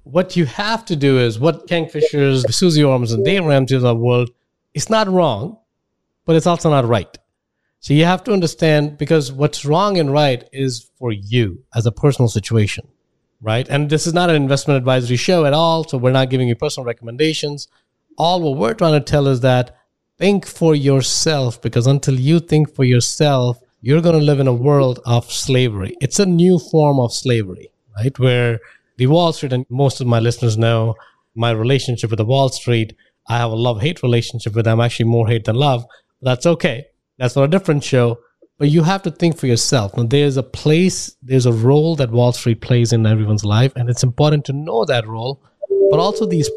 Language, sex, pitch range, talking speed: English, male, 120-155 Hz, 200 wpm